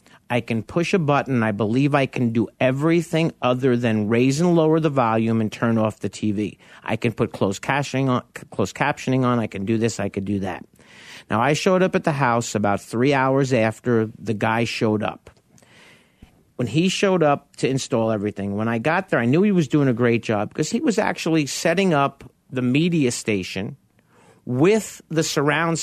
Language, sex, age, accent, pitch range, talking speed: English, male, 50-69, American, 120-160 Hz, 200 wpm